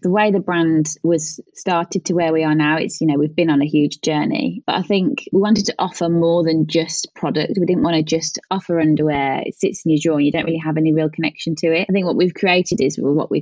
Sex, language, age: female, English, 20-39